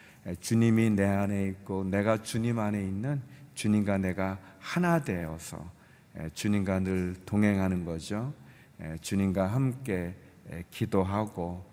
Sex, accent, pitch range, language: male, native, 95-125 Hz, Korean